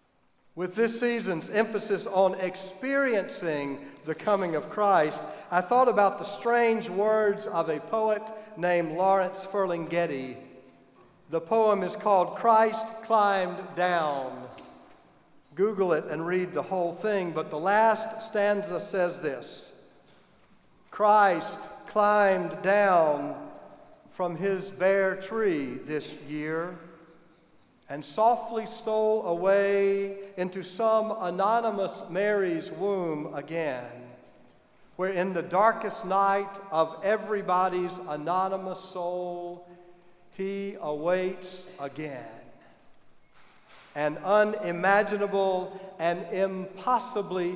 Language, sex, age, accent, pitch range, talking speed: English, male, 50-69, American, 170-205 Hz, 95 wpm